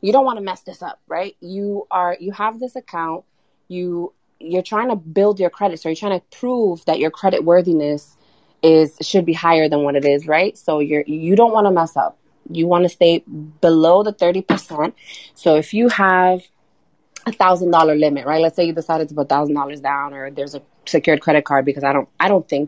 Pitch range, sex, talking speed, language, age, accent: 155-195 Hz, female, 220 wpm, English, 30-49, American